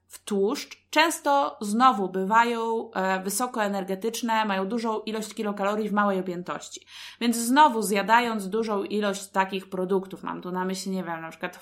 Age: 20-39